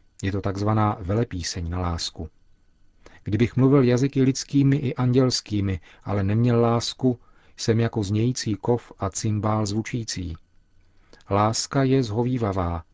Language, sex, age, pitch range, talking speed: Czech, male, 40-59, 95-120 Hz, 115 wpm